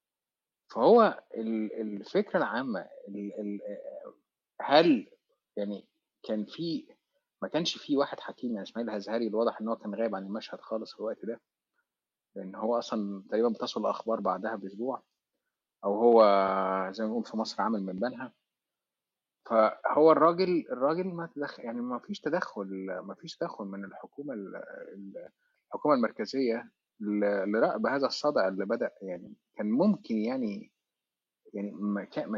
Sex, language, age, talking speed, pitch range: male, Arabic, 30-49, 135 wpm, 100-130 Hz